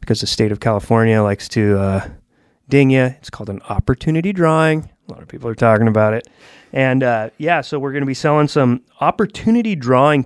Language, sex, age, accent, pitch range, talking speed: English, male, 30-49, American, 120-140 Hz, 205 wpm